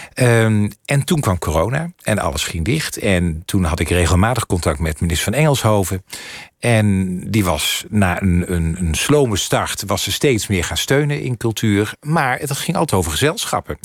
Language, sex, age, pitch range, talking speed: Dutch, male, 50-69, 90-120 Hz, 180 wpm